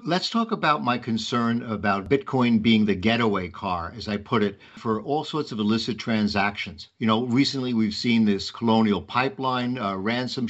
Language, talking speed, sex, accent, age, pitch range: English, 175 wpm, male, American, 50-69, 110-135 Hz